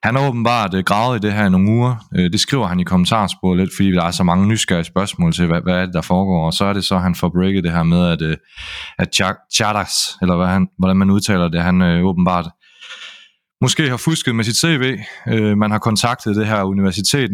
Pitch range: 90-105 Hz